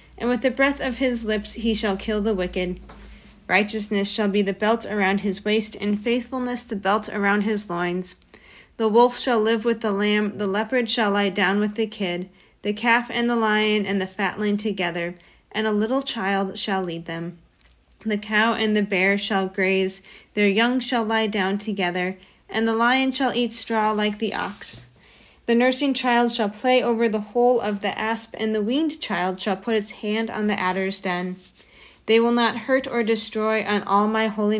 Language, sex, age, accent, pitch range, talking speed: English, female, 40-59, American, 195-225 Hz, 195 wpm